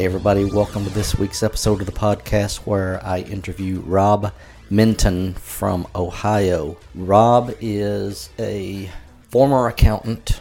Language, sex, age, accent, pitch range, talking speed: English, male, 40-59, American, 100-110 Hz, 120 wpm